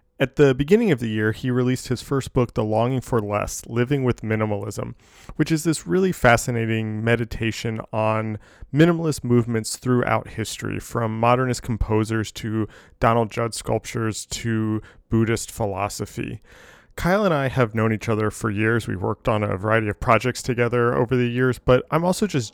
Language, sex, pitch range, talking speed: English, male, 110-130 Hz, 170 wpm